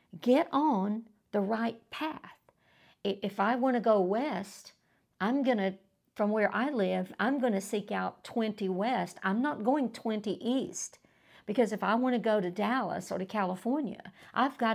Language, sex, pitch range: English, female, 190-250 Hz